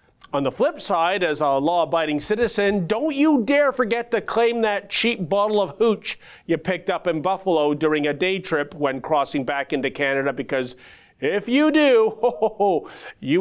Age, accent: 40-59, American